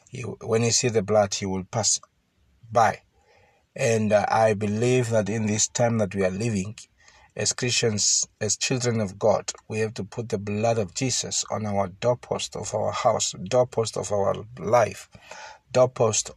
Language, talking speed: English, 170 wpm